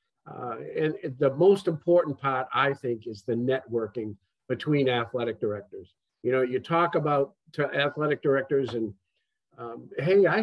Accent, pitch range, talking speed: American, 130-175 Hz, 150 wpm